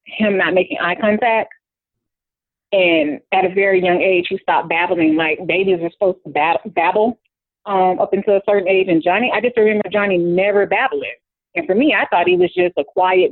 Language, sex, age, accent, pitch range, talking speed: English, female, 30-49, American, 165-195 Hz, 200 wpm